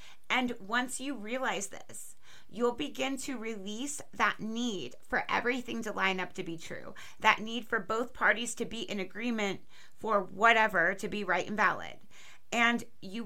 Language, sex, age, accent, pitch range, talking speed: English, female, 30-49, American, 200-255 Hz, 170 wpm